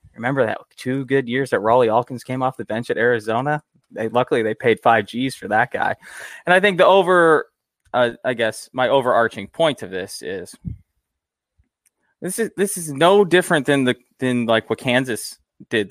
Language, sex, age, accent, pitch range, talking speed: English, male, 20-39, American, 110-140 Hz, 190 wpm